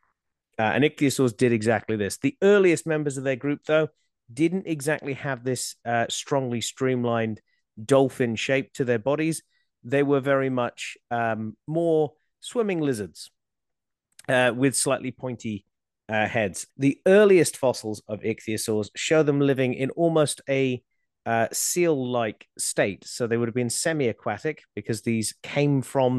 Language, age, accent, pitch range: English, 30-49, British, 115-150 Hz